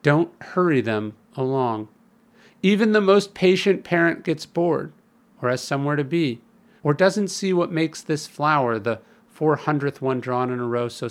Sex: male